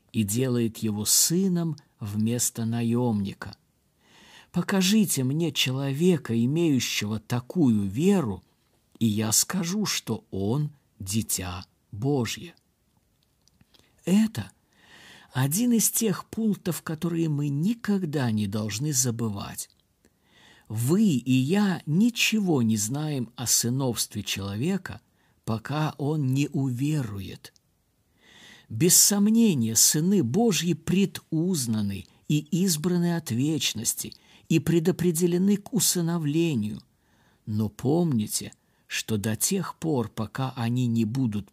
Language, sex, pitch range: Russian, male, 110-170 Hz